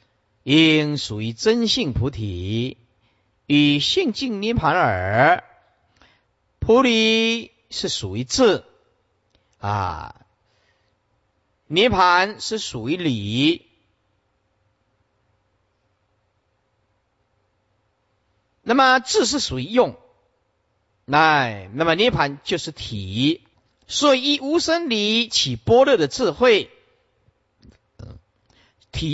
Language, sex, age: Chinese, male, 50-69